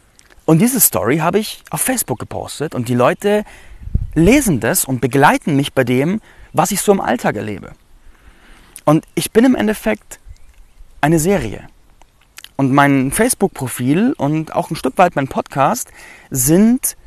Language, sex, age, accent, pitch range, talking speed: German, male, 30-49, German, 120-185 Hz, 150 wpm